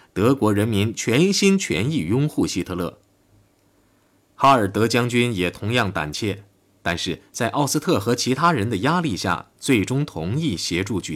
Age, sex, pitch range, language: 20-39, male, 90-130 Hz, Chinese